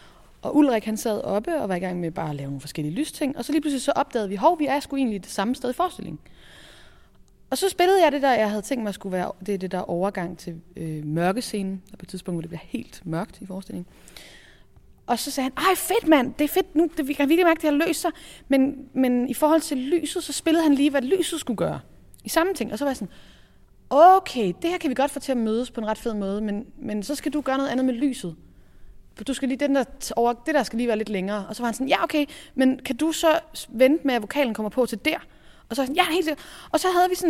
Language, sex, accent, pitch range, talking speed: Danish, female, native, 210-300 Hz, 270 wpm